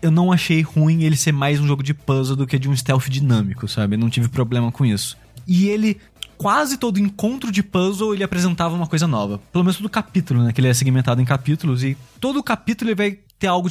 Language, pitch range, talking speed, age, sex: Portuguese, 130-180 Hz, 230 wpm, 20-39, male